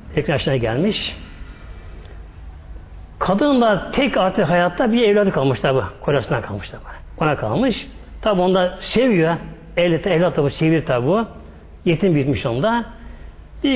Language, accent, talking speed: Turkish, native, 125 wpm